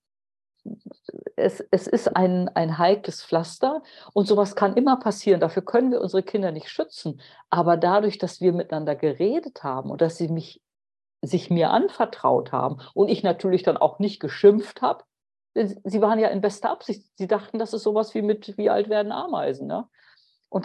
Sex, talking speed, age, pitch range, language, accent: female, 175 wpm, 50-69, 160-215 Hz, German, German